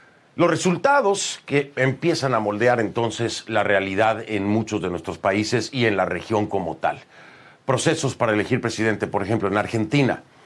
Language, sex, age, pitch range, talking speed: Spanish, male, 40-59, 100-125 Hz, 160 wpm